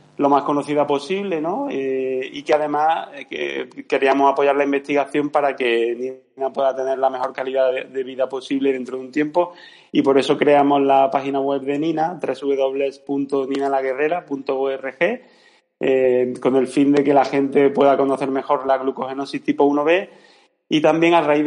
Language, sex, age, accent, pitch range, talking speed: Spanish, male, 30-49, Spanish, 130-145 Hz, 170 wpm